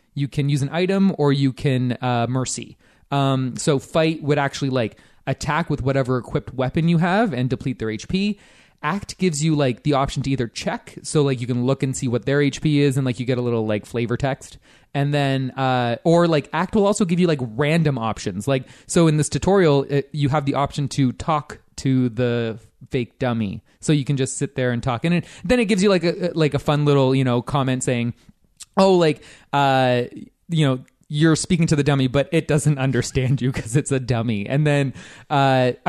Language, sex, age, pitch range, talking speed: English, male, 20-39, 125-155 Hz, 215 wpm